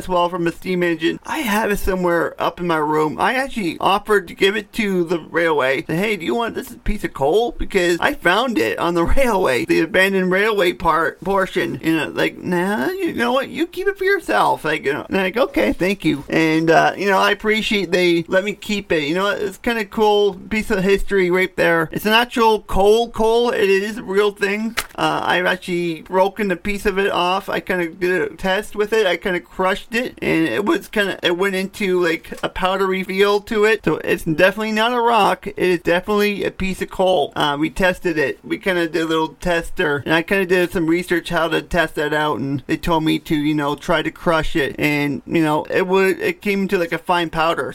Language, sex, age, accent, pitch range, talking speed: English, male, 40-59, American, 170-205 Hz, 240 wpm